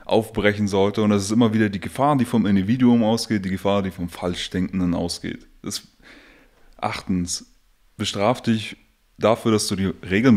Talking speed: 160 wpm